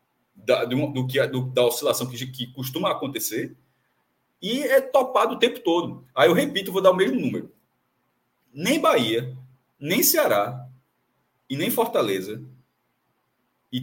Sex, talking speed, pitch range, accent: male, 125 wpm, 125-200 Hz, Brazilian